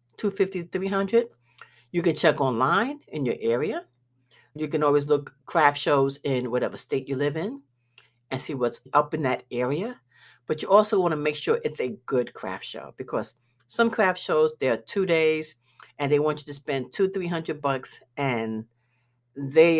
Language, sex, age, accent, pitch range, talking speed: English, female, 60-79, American, 125-170 Hz, 180 wpm